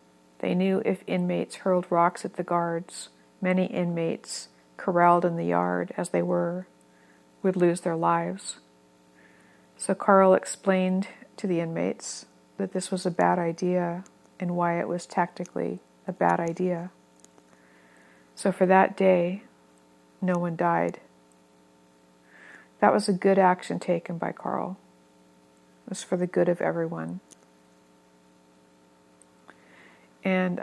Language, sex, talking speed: English, female, 125 wpm